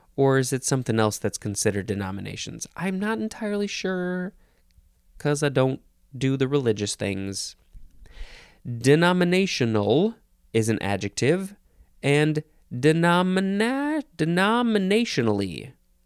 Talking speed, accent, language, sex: 95 wpm, American, English, male